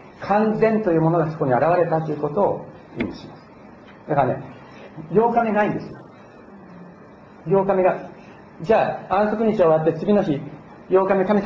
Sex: male